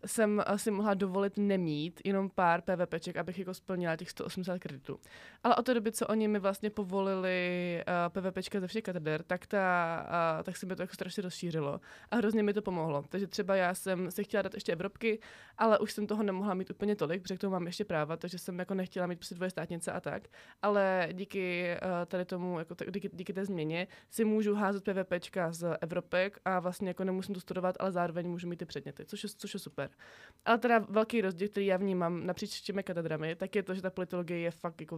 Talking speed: 225 wpm